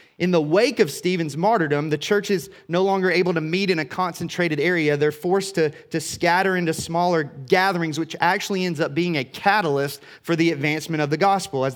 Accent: American